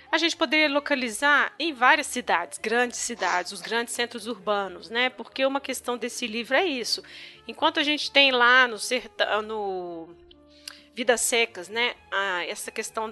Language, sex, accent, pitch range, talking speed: Portuguese, female, Brazilian, 220-260 Hz, 155 wpm